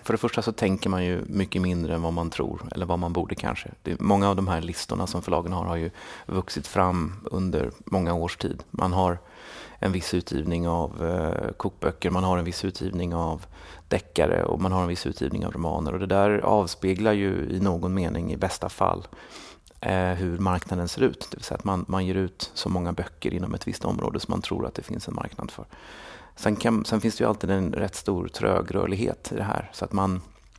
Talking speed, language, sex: 230 wpm, Swedish, male